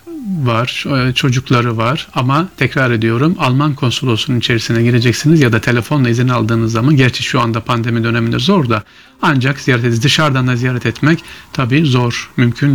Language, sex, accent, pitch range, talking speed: Turkish, male, native, 115-150 Hz, 155 wpm